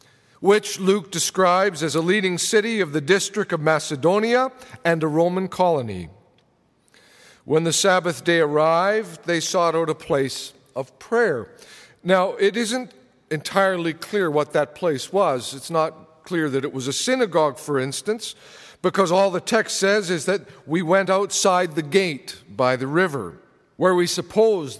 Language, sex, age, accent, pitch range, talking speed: English, male, 50-69, American, 140-185 Hz, 155 wpm